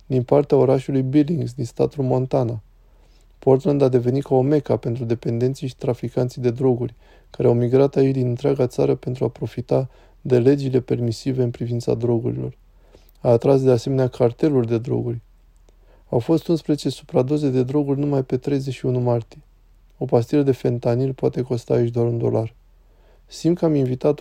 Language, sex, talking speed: Romanian, male, 165 wpm